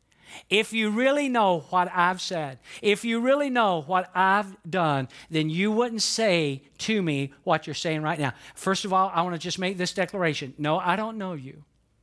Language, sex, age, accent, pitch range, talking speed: English, male, 50-69, American, 150-210 Hz, 200 wpm